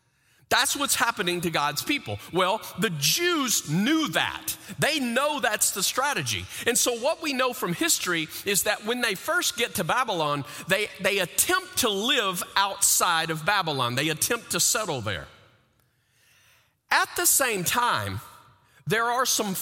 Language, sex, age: English, male, 40-59